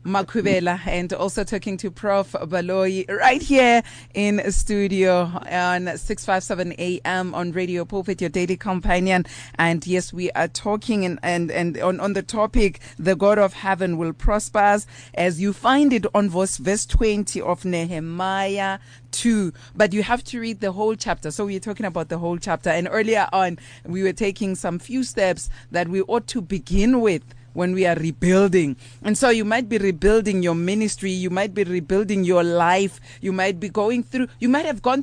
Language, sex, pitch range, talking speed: English, female, 175-210 Hz, 190 wpm